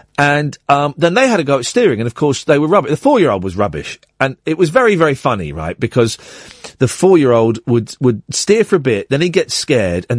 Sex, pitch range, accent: male, 110-175 Hz, British